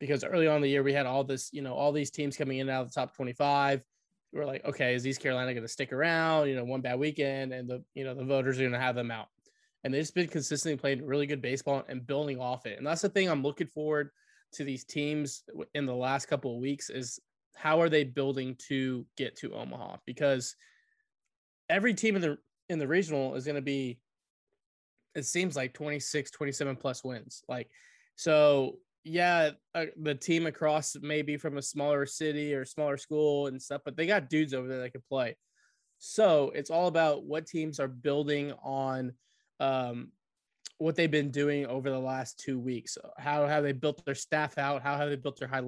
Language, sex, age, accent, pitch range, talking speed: English, male, 20-39, American, 135-155 Hz, 215 wpm